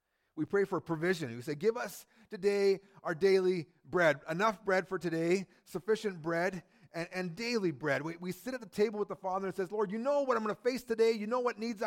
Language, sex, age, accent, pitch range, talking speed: English, male, 40-59, American, 125-205 Hz, 235 wpm